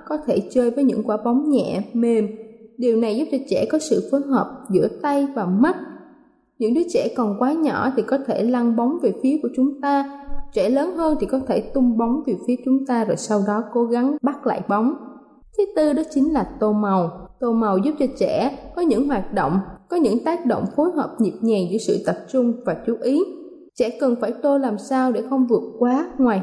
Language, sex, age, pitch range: Thai, female, 20-39, 225-285 Hz